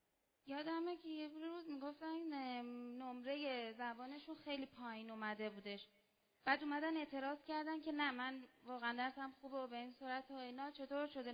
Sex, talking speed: female, 155 wpm